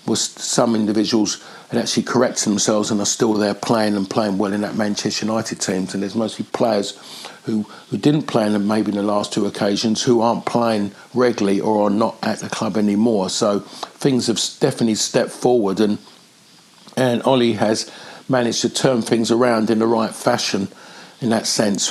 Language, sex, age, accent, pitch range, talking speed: English, male, 50-69, British, 105-120 Hz, 190 wpm